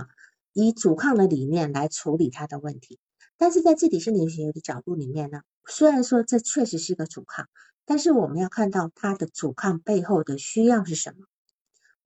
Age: 50-69